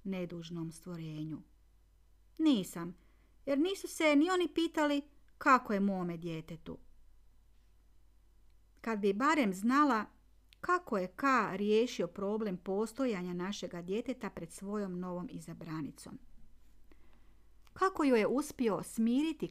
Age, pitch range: 40-59, 165-220 Hz